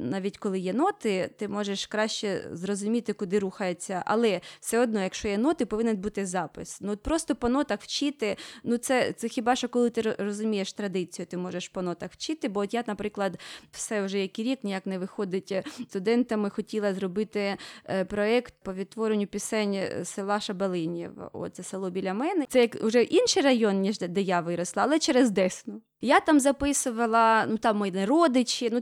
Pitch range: 195-235 Hz